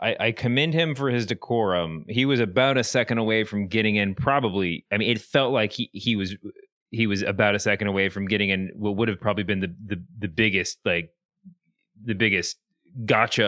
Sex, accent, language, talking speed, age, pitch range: male, American, English, 205 wpm, 30-49, 100-130 Hz